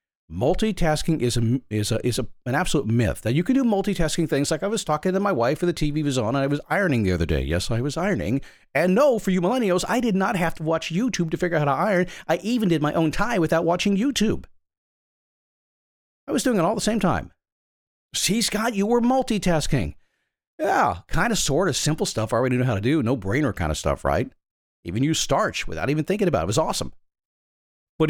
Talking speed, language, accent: 235 wpm, English, American